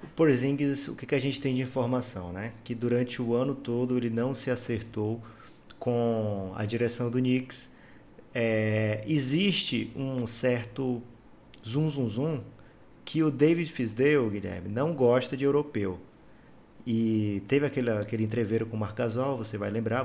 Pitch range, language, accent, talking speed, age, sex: 110-135 Hz, Portuguese, Brazilian, 155 wpm, 20-39, male